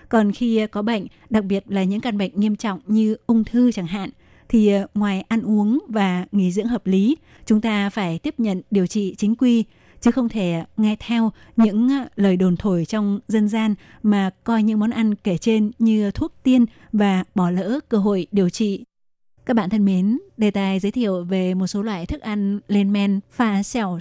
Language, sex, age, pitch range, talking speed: Vietnamese, female, 20-39, 190-225 Hz, 205 wpm